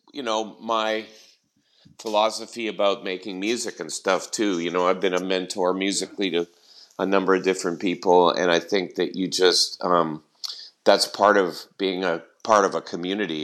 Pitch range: 90-110 Hz